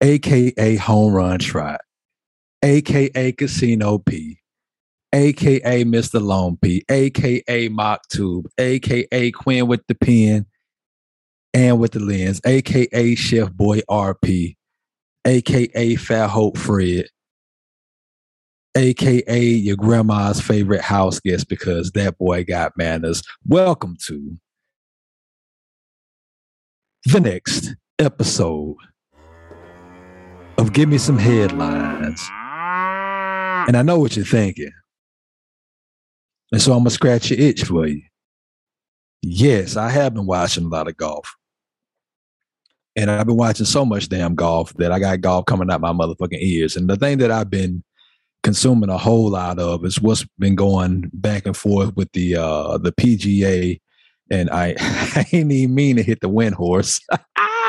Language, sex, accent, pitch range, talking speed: English, male, American, 90-125 Hz, 130 wpm